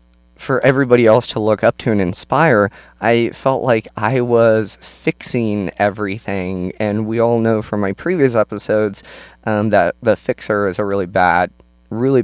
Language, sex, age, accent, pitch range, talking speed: English, male, 20-39, American, 90-130 Hz, 160 wpm